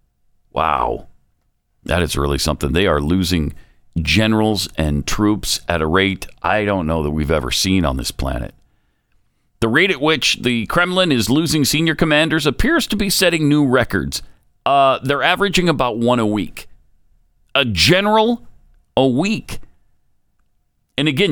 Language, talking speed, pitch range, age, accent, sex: English, 150 wpm, 105-160 Hz, 50-69, American, male